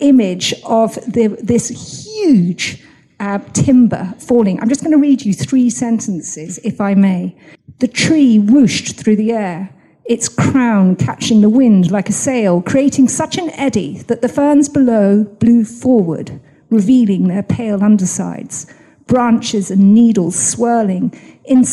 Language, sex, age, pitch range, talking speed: English, female, 50-69, 195-250 Hz, 145 wpm